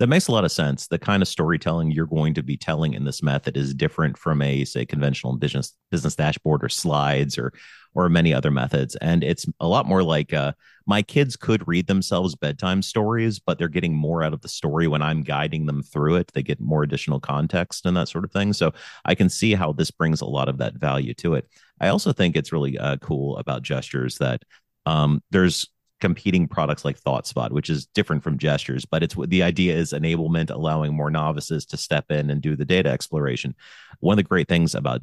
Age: 30-49